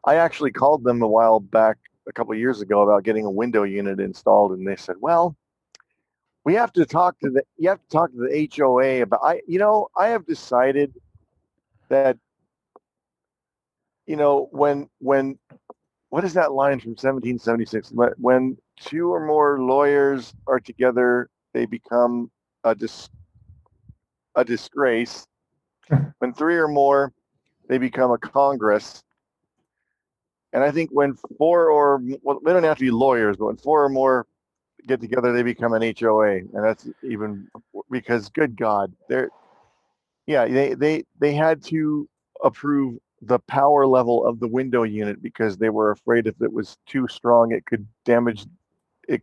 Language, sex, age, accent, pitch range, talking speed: English, male, 50-69, American, 115-145 Hz, 160 wpm